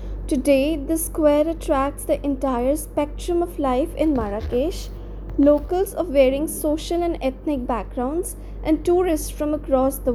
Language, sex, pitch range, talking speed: English, female, 260-325 Hz, 135 wpm